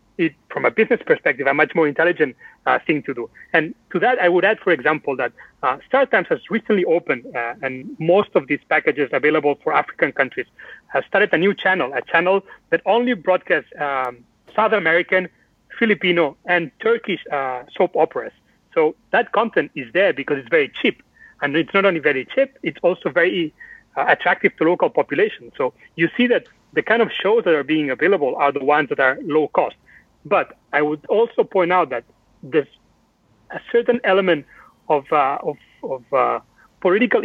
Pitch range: 155-225 Hz